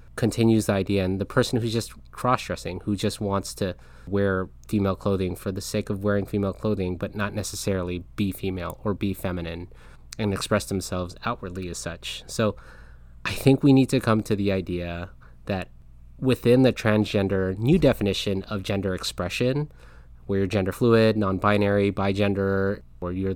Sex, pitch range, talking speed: male, 90-110 Hz, 170 wpm